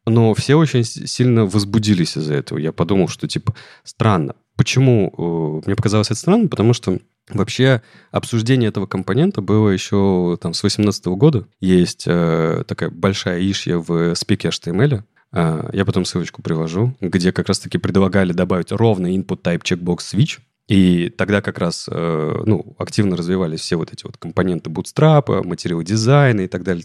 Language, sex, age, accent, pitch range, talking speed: Russian, male, 30-49, native, 90-120 Hz, 150 wpm